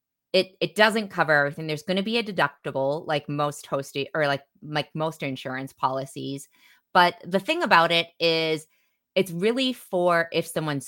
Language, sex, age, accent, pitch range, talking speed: English, female, 20-39, American, 140-180 Hz, 170 wpm